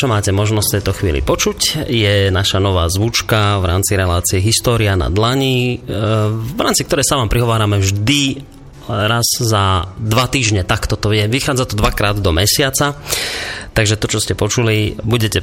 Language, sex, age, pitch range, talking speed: Slovak, male, 30-49, 105-125 Hz, 160 wpm